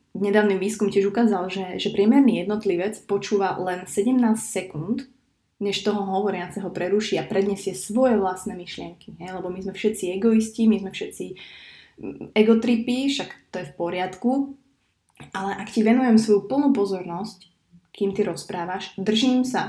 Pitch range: 180-215 Hz